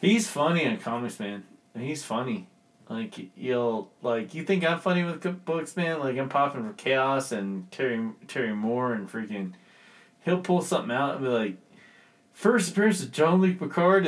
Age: 30-49